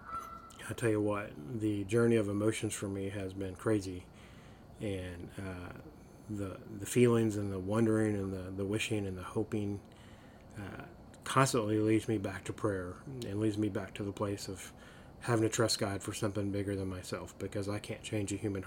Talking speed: 185 wpm